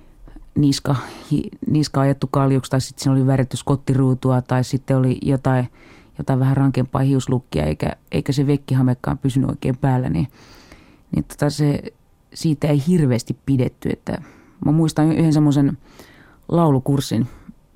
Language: Finnish